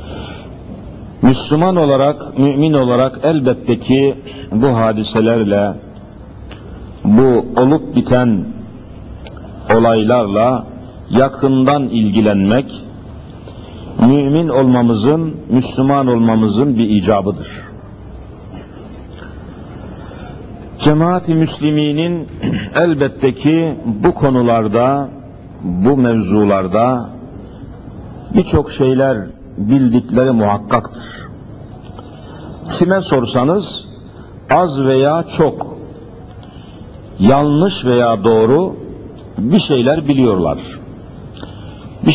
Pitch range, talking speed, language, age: 110-140 Hz, 65 wpm, Turkish, 60-79